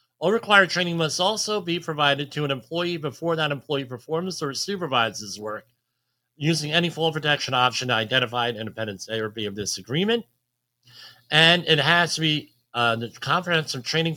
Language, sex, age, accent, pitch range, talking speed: English, male, 40-59, American, 125-175 Hz, 175 wpm